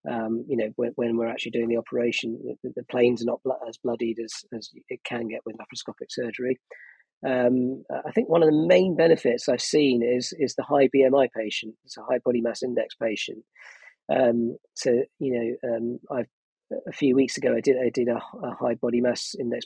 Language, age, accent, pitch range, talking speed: English, 40-59, British, 120-135 Hz, 210 wpm